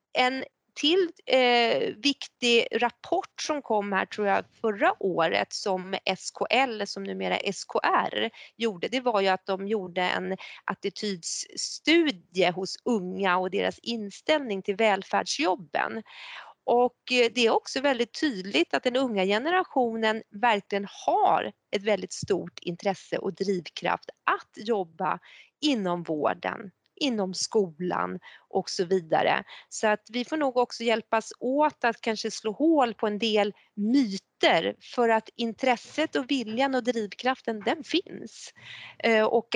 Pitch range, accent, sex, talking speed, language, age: 190-250 Hz, native, female, 130 wpm, Swedish, 30-49